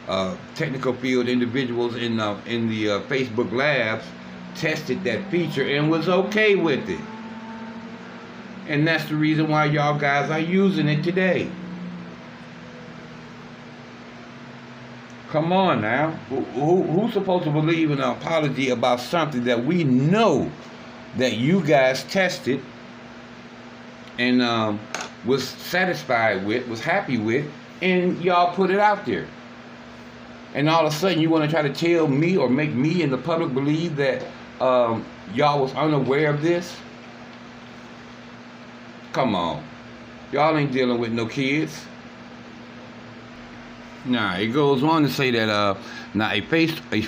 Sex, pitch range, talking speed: male, 115-160 Hz, 140 wpm